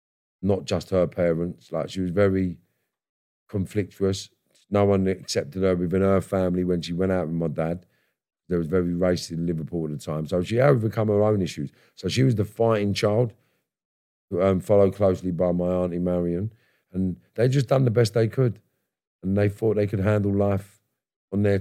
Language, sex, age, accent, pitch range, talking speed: English, male, 50-69, British, 85-100 Hz, 190 wpm